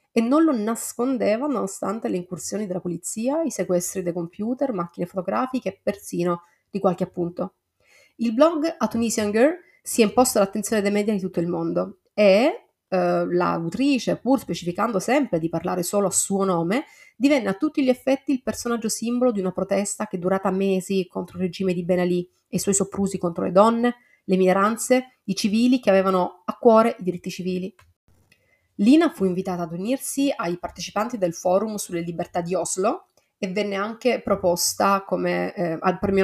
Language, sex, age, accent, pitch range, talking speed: Italian, female, 30-49, native, 185-225 Hz, 175 wpm